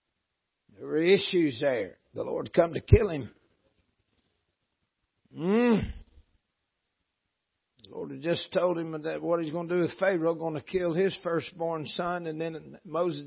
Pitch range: 125-170 Hz